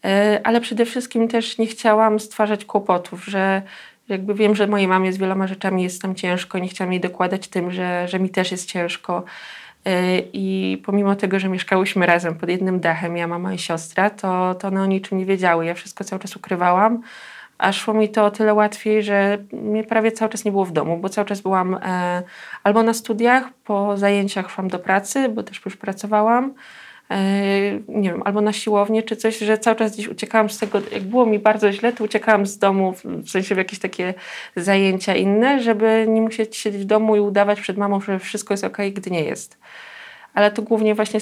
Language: Polish